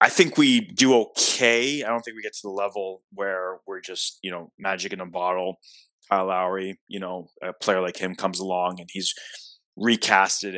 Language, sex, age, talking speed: English, male, 20-39, 200 wpm